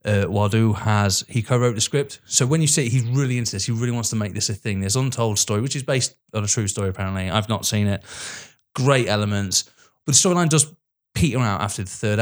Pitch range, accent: 100-130 Hz, British